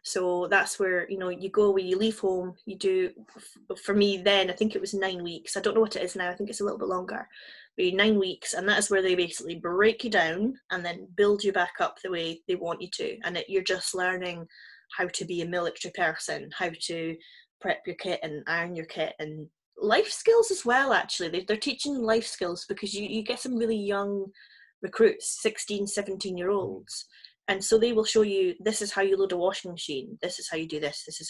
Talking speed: 235 wpm